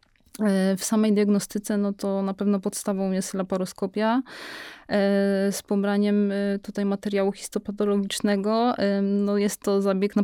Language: Polish